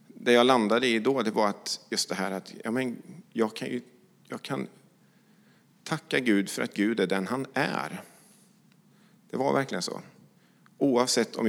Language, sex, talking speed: English, male, 145 wpm